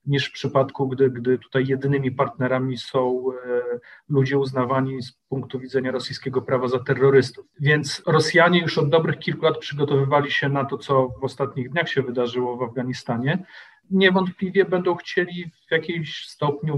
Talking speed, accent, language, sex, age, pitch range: 155 wpm, native, Polish, male, 40-59, 125-145 Hz